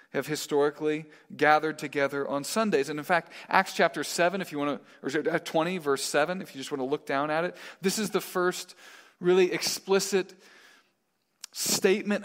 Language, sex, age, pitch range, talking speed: English, male, 40-59, 145-185 Hz, 175 wpm